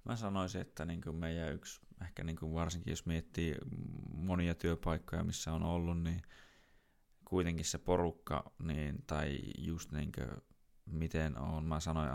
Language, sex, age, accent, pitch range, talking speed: Finnish, male, 30-49, native, 75-85 Hz, 145 wpm